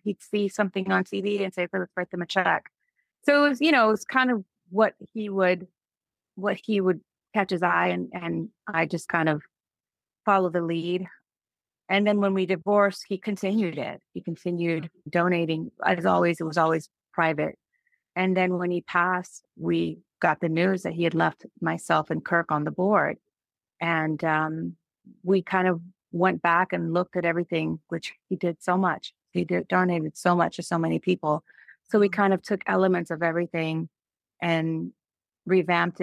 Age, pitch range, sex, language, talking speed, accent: 30-49, 165-195 Hz, female, English, 180 wpm, American